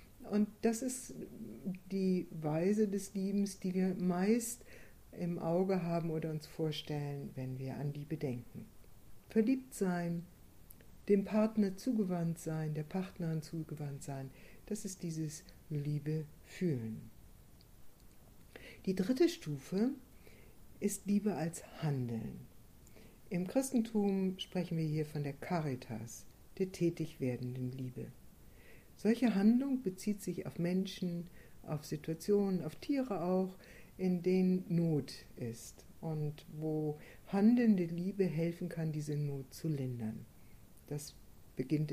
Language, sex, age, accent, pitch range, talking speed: German, female, 60-79, German, 145-190 Hz, 115 wpm